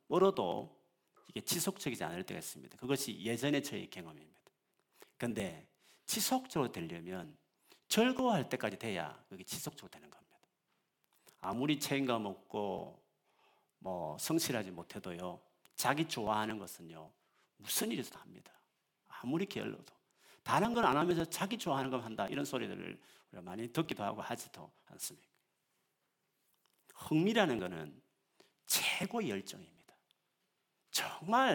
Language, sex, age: Korean, male, 40-59